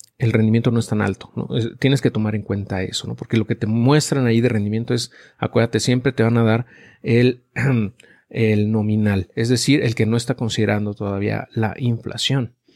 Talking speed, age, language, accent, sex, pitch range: 200 wpm, 40-59, Spanish, Mexican, male, 110-130 Hz